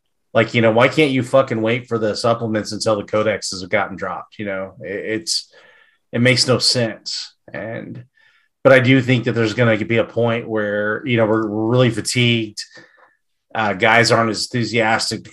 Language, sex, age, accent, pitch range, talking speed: English, male, 30-49, American, 100-115 Hz, 190 wpm